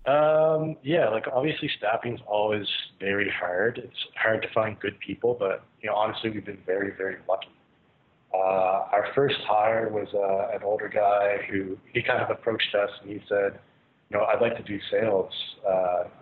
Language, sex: English, male